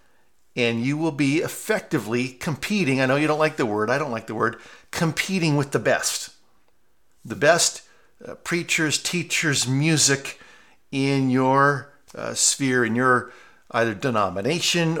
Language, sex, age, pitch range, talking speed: English, male, 50-69, 125-160 Hz, 145 wpm